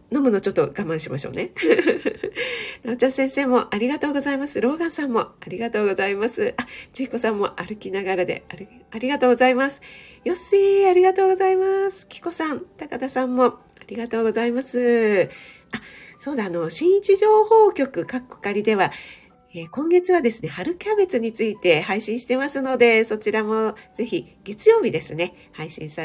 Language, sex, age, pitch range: Japanese, female, 40-59, 210-285 Hz